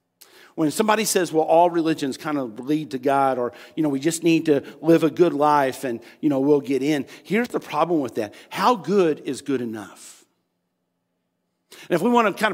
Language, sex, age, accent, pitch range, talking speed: English, male, 50-69, American, 165-260 Hz, 210 wpm